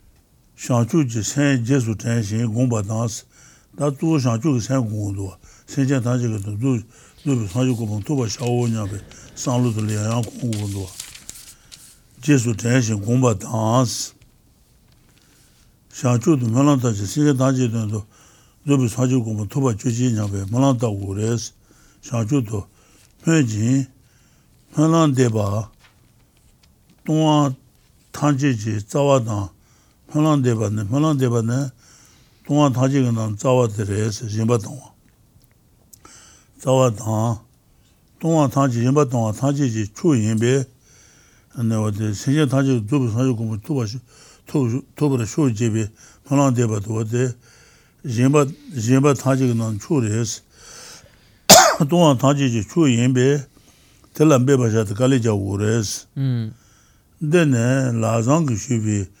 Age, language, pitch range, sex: 60-79, English, 110-135 Hz, male